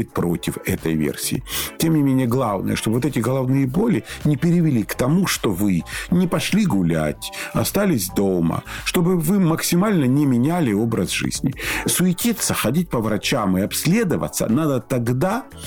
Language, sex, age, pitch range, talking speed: Russian, male, 50-69, 115-165 Hz, 145 wpm